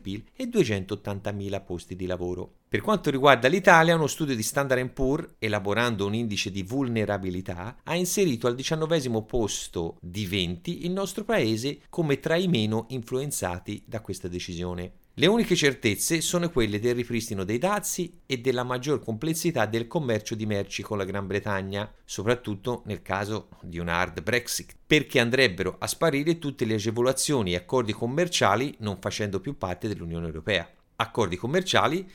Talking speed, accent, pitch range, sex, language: 155 wpm, native, 95-135 Hz, male, Italian